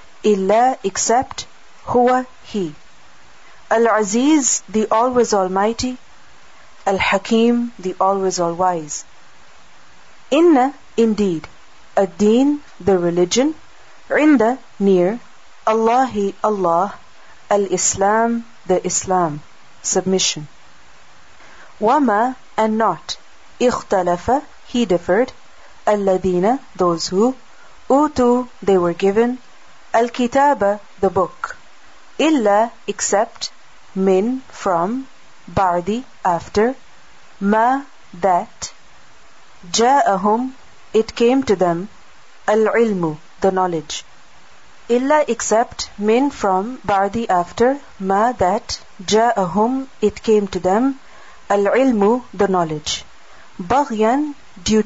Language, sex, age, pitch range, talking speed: English, female, 40-59, 185-240 Hz, 90 wpm